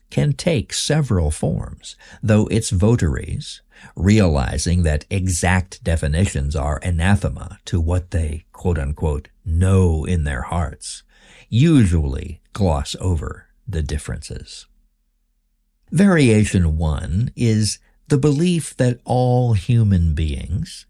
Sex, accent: male, American